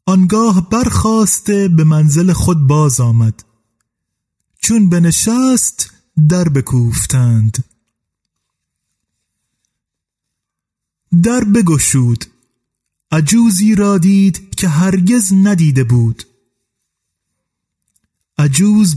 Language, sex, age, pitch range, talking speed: Persian, male, 30-49, 130-190 Hz, 70 wpm